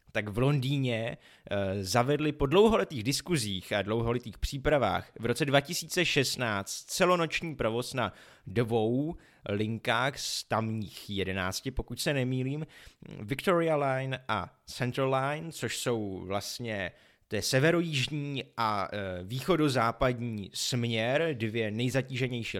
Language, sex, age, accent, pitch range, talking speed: Czech, male, 20-39, native, 110-145 Hz, 100 wpm